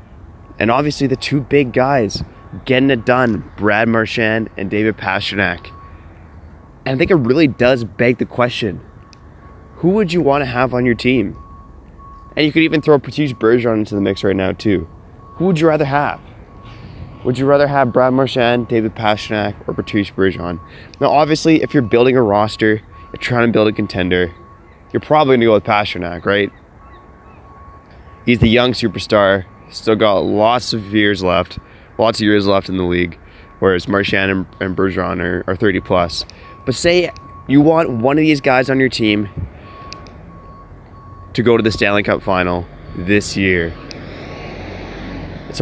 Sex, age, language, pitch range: male, 20-39, English, 95-125 Hz